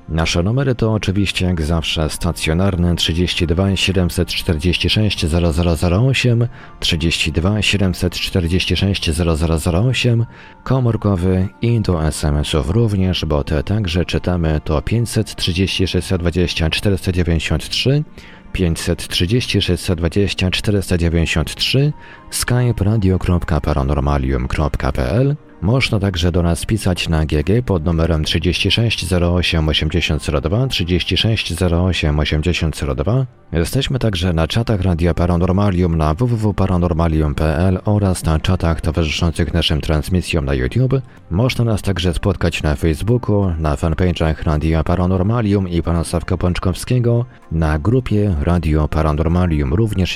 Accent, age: native, 40-59